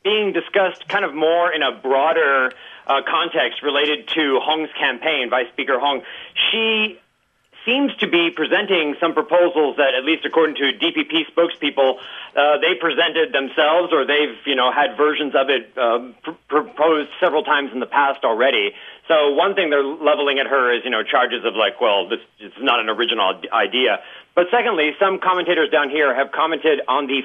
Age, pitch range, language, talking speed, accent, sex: 40-59, 145-180 Hz, English, 180 wpm, American, male